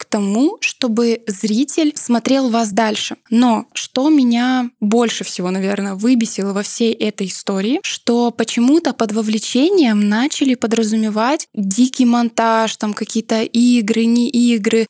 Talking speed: 120 wpm